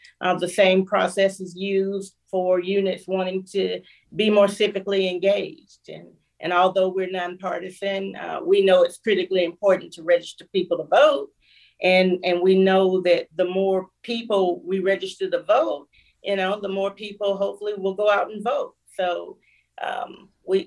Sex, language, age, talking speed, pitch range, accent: female, English, 40-59, 165 wpm, 175-200 Hz, American